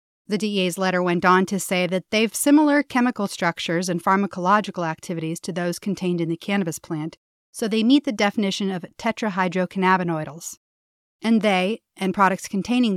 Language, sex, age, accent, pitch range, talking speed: English, female, 30-49, American, 175-215 Hz, 155 wpm